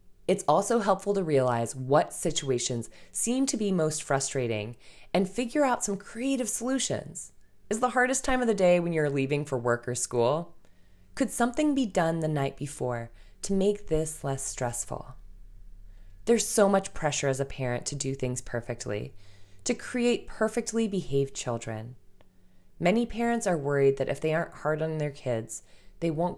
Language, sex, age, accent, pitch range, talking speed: English, female, 20-39, American, 120-205 Hz, 170 wpm